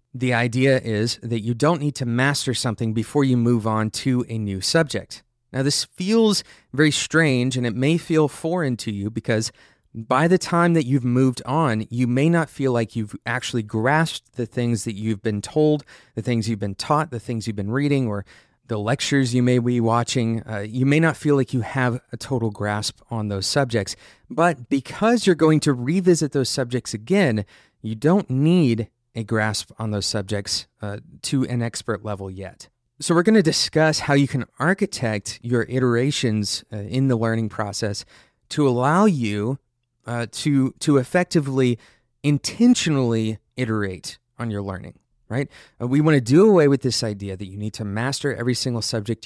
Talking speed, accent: 185 wpm, American